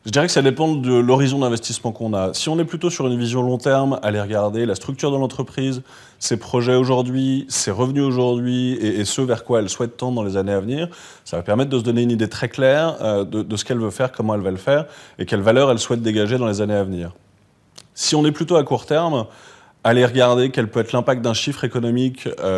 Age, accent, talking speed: 20-39, French, 240 wpm